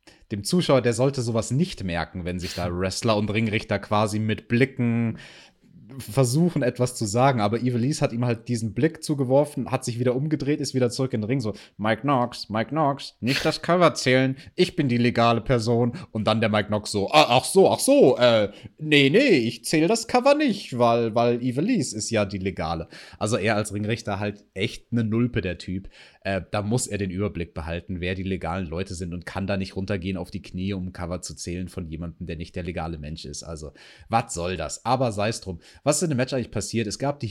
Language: German